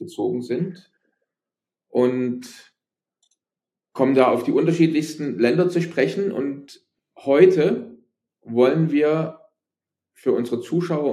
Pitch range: 120-175 Hz